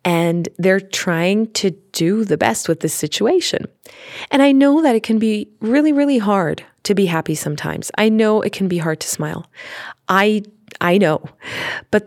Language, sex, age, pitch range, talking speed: English, female, 30-49, 165-215 Hz, 180 wpm